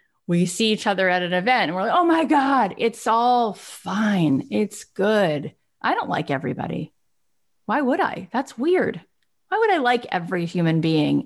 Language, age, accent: English, 30-49, American